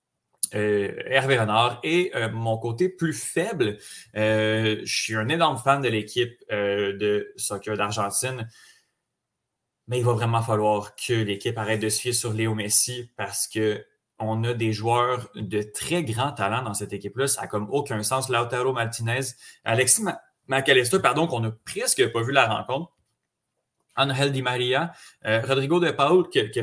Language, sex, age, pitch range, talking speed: French, male, 30-49, 110-145 Hz, 170 wpm